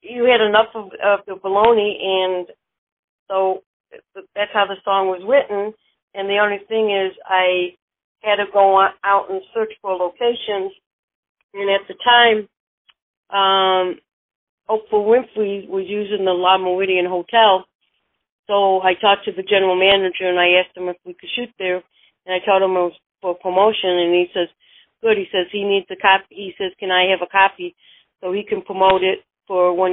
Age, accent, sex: 40-59, American, female